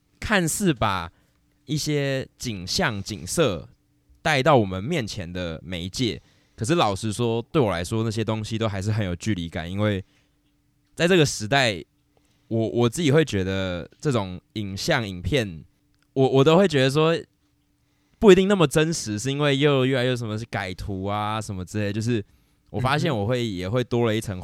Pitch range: 95-125 Hz